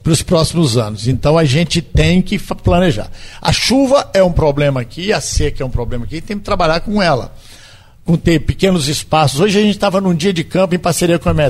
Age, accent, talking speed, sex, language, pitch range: 60-79, Brazilian, 215 wpm, male, Portuguese, 140-180 Hz